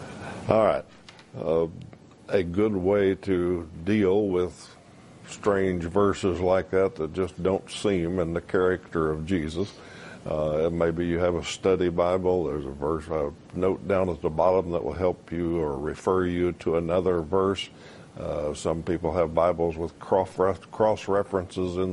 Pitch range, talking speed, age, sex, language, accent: 85-100 Hz, 160 wpm, 60-79, male, English, American